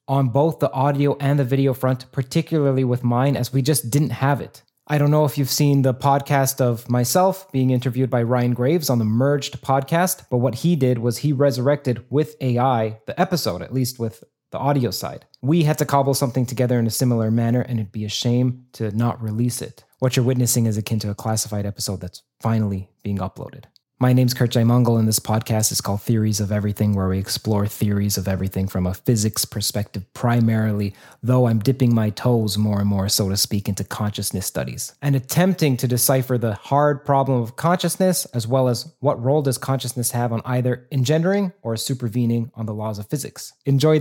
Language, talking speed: English, 205 wpm